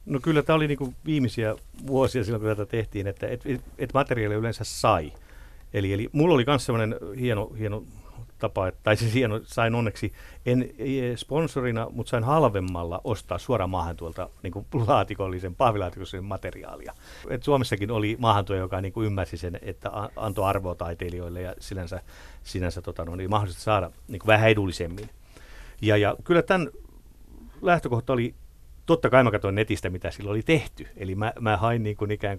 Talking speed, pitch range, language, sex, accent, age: 165 wpm, 95-120 Hz, Finnish, male, native, 50-69